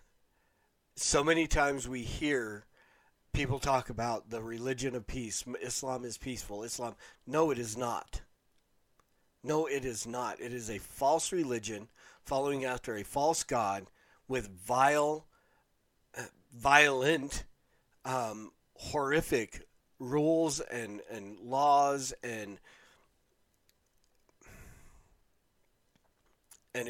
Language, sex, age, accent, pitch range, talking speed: English, male, 40-59, American, 115-135 Hz, 100 wpm